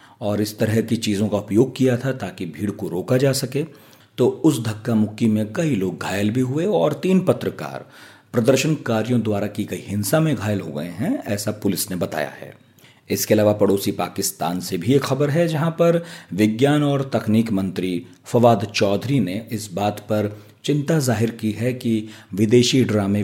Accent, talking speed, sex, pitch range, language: native, 185 wpm, male, 100-130 Hz, Hindi